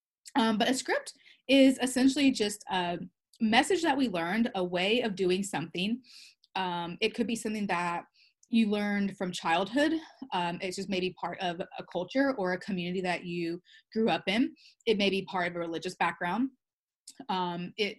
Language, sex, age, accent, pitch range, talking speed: English, female, 20-39, American, 180-235 Hz, 175 wpm